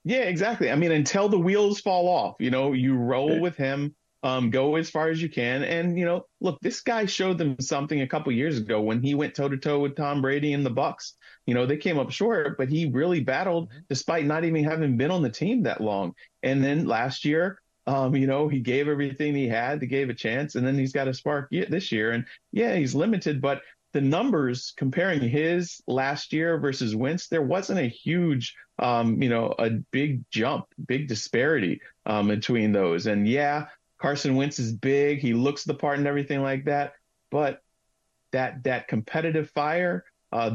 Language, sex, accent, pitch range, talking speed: English, male, American, 130-160 Hz, 205 wpm